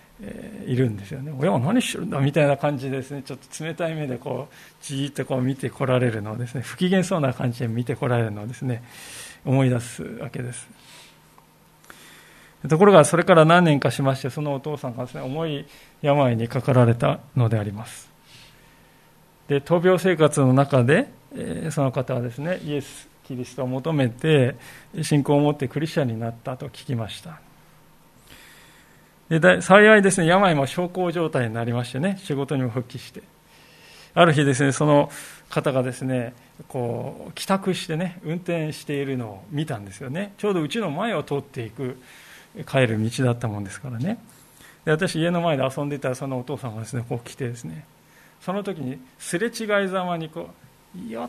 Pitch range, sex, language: 125-155 Hz, male, Japanese